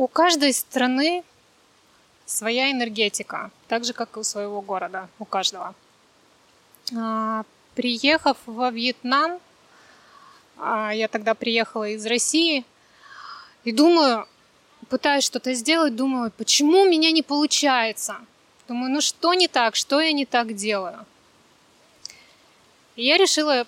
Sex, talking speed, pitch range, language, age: female, 115 wpm, 220-275 Hz, Russian, 20-39